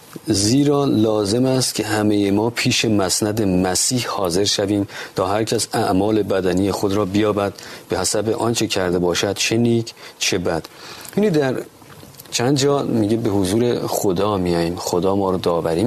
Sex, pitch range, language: male, 95-120 Hz, Persian